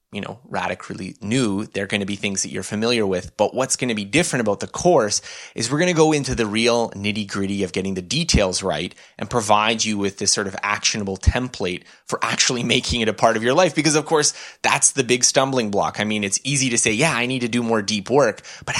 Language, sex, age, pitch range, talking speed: English, male, 20-39, 100-130 Hz, 250 wpm